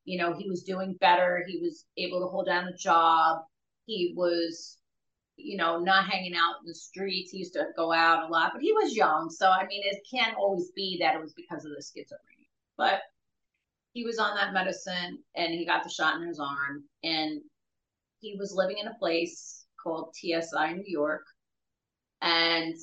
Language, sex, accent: English, female, American